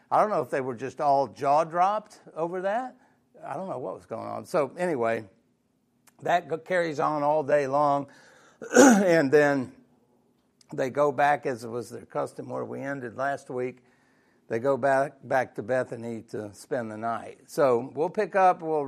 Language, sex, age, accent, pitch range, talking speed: English, male, 60-79, American, 125-160 Hz, 180 wpm